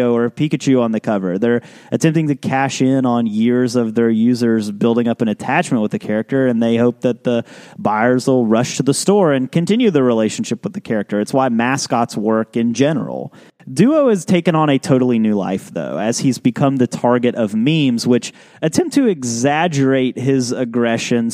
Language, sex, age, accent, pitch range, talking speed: English, male, 30-49, American, 120-155 Hz, 190 wpm